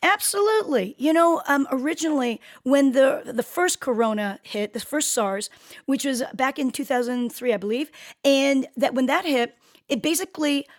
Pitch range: 235-280 Hz